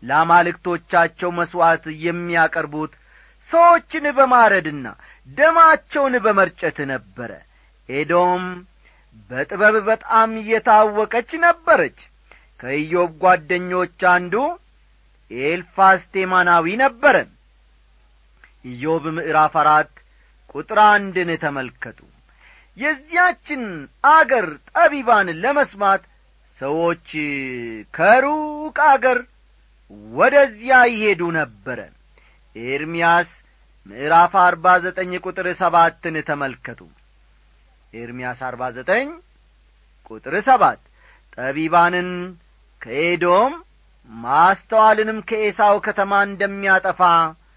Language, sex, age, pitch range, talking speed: Amharic, male, 40-59, 145-220 Hz, 60 wpm